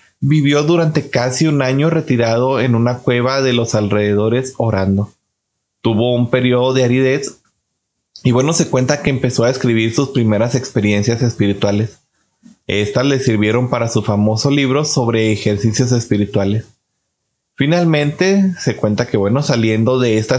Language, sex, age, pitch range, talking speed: Spanish, male, 30-49, 115-140 Hz, 140 wpm